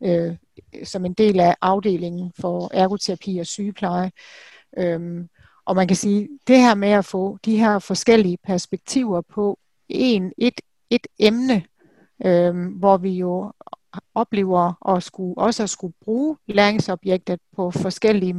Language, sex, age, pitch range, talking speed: Danish, female, 60-79, 185-215 Hz, 145 wpm